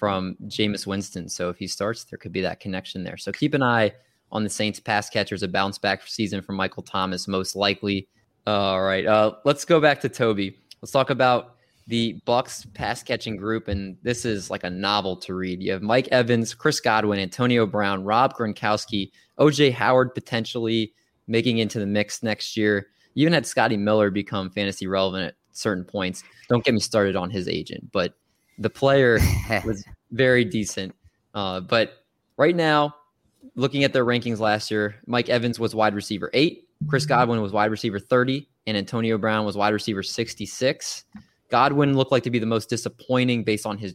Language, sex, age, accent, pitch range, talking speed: English, male, 20-39, American, 100-120 Hz, 185 wpm